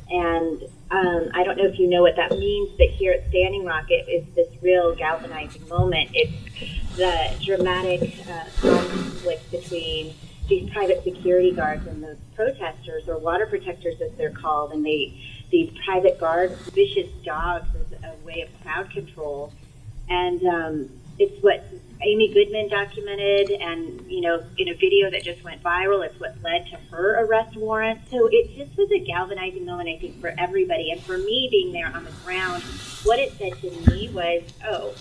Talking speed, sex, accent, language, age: 175 wpm, female, American, English, 30-49